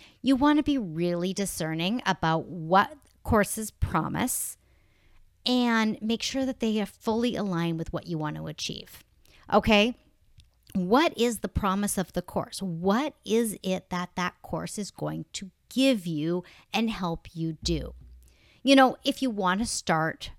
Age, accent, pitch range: 50-69, American, 175-240 Hz